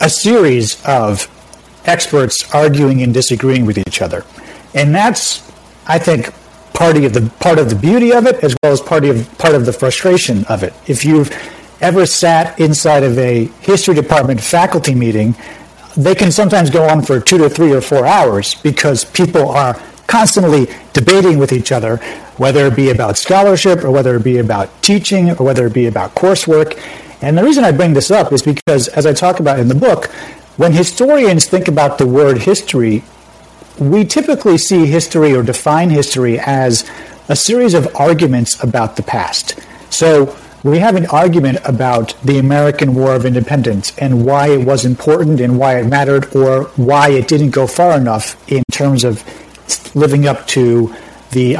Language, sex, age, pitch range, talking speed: English, male, 50-69, 125-165 Hz, 180 wpm